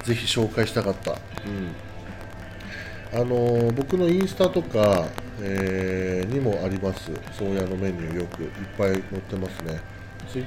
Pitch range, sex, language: 95-115 Hz, male, Japanese